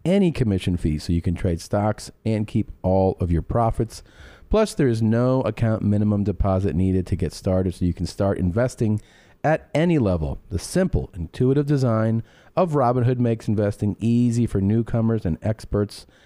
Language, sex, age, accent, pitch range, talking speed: English, male, 40-59, American, 95-125 Hz, 170 wpm